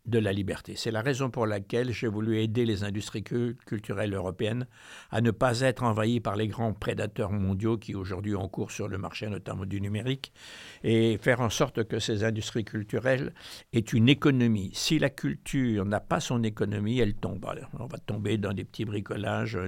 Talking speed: 190 wpm